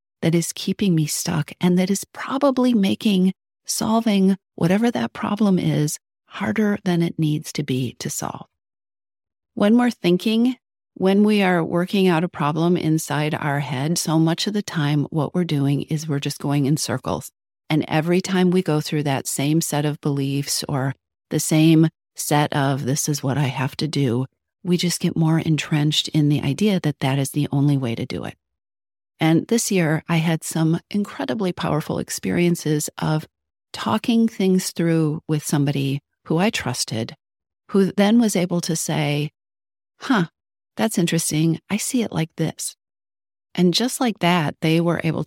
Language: English